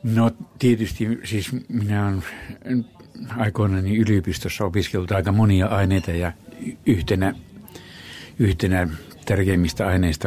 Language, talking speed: Finnish, 95 wpm